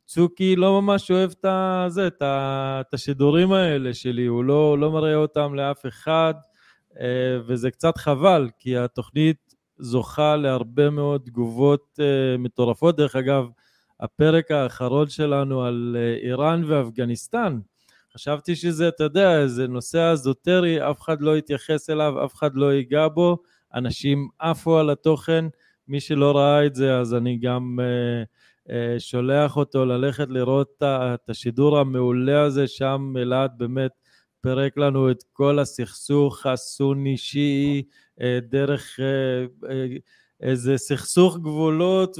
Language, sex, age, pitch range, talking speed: Hebrew, male, 20-39, 130-155 Hz, 120 wpm